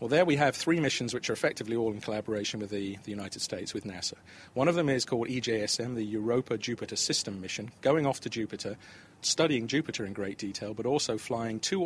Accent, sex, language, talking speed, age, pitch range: British, male, English, 210 wpm, 40-59, 105-130 Hz